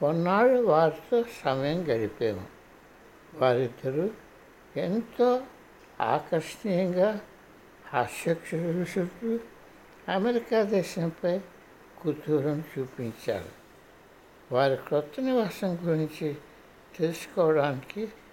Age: 60-79